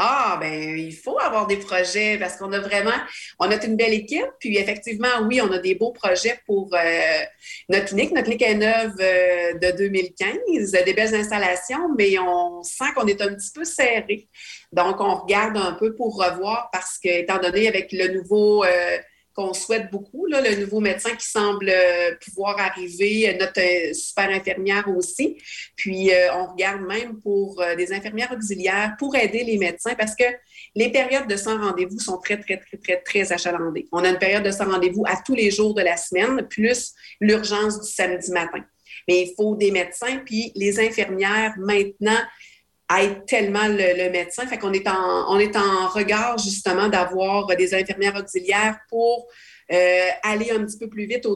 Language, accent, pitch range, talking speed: French, Canadian, 185-220 Hz, 180 wpm